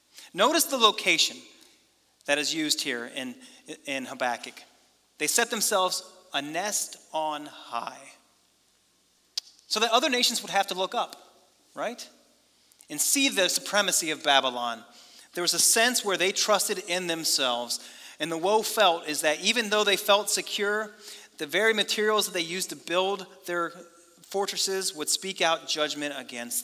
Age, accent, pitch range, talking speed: 30-49, American, 155-200 Hz, 155 wpm